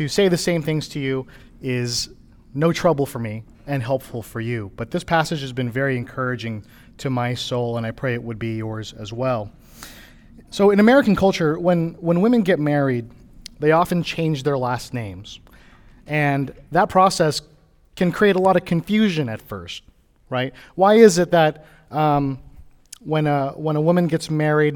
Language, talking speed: English, 175 wpm